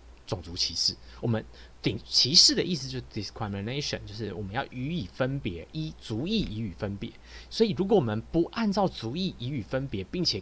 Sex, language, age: male, Chinese, 30-49